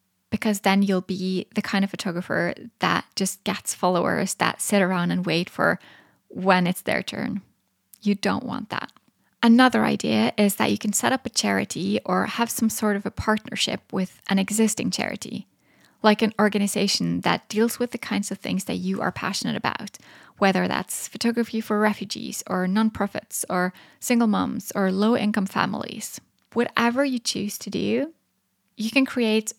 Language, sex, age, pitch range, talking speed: English, female, 10-29, 195-225 Hz, 170 wpm